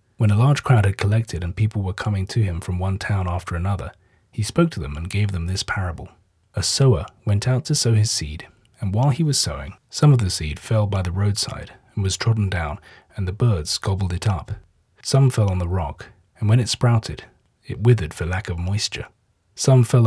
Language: English